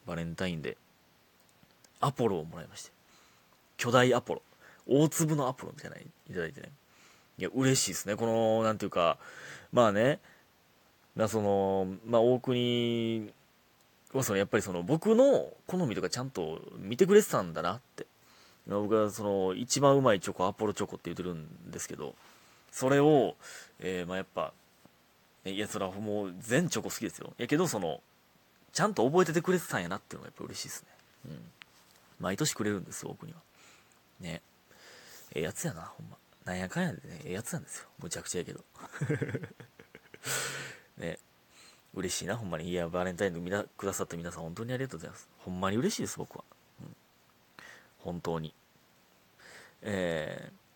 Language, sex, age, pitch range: Japanese, male, 20-39, 90-125 Hz